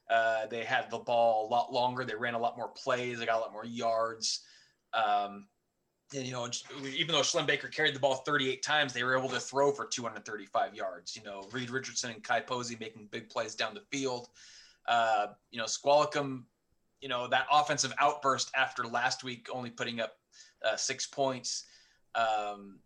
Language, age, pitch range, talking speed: English, 20-39, 115-140 Hz, 190 wpm